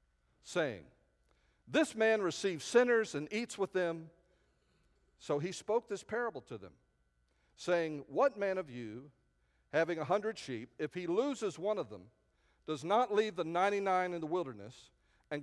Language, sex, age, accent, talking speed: English, male, 50-69, American, 155 wpm